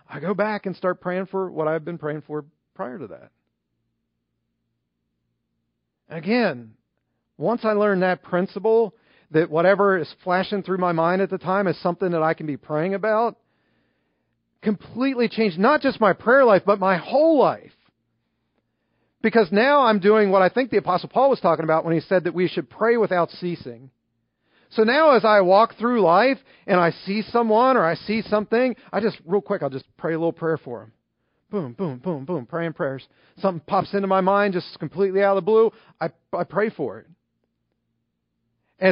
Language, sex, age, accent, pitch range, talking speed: English, male, 40-59, American, 155-205 Hz, 190 wpm